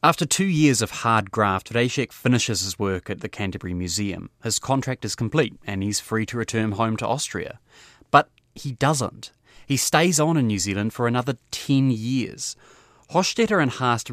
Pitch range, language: 110-140 Hz, English